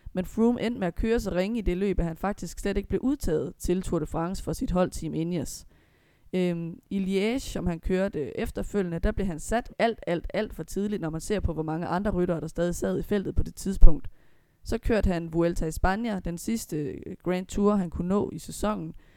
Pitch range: 165-195 Hz